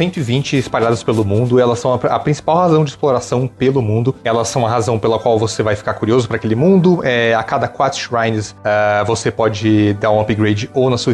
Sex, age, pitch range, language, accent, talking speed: male, 30-49, 110-140 Hz, Portuguese, Brazilian, 220 wpm